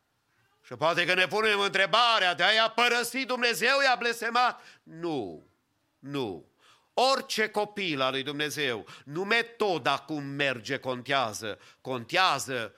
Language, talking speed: English, 125 wpm